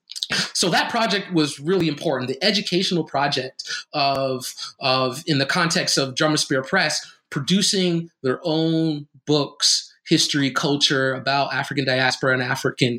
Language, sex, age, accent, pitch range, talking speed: English, male, 30-49, American, 130-150 Hz, 135 wpm